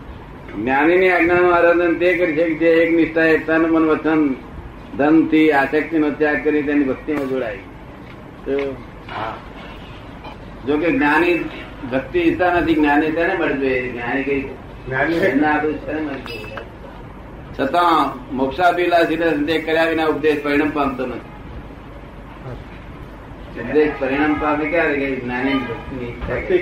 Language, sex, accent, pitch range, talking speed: Gujarati, male, native, 140-165 Hz, 60 wpm